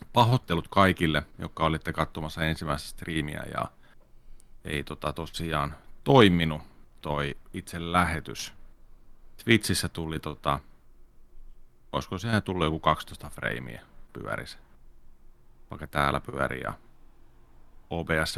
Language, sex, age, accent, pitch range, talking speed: Finnish, male, 30-49, native, 80-95 Hz, 100 wpm